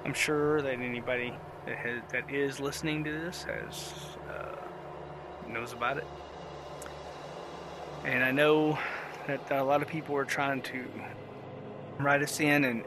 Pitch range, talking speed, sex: 105-145 Hz, 145 wpm, male